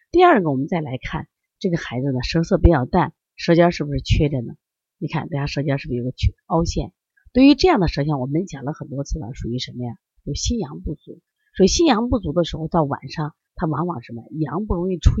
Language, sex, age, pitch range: Chinese, female, 30-49, 145-215 Hz